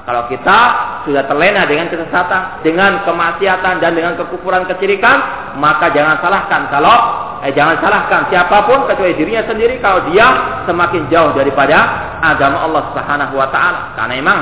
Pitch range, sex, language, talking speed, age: 165-225 Hz, male, Malay, 145 wpm, 40-59